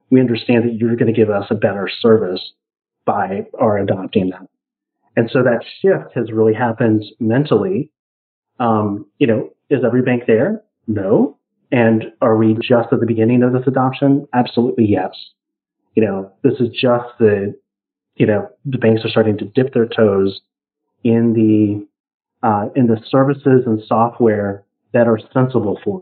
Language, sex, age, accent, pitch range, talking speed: English, male, 30-49, American, 110-130 Hz, 165 wpm